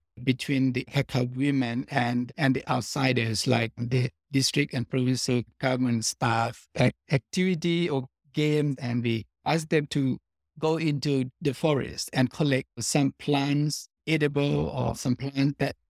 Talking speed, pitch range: 135 wpm, 125-145 Hz